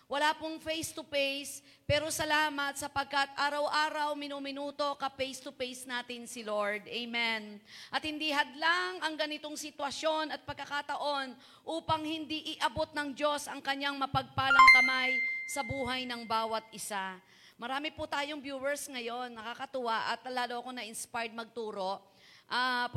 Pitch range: 255-310 Hz